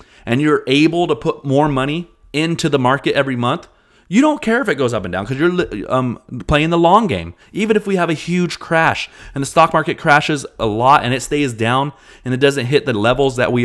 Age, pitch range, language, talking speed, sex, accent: 30-49, 115-155 Hz, English, 235 wpm, male, American